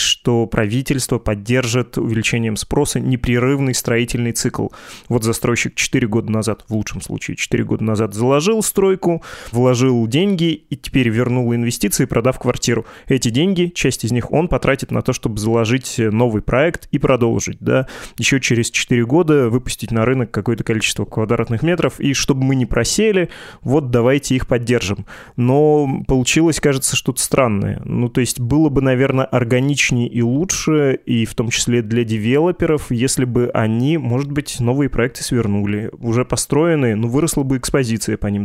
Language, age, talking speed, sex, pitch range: Russian, 20-39, 155 wpm, male, 115-140 Hz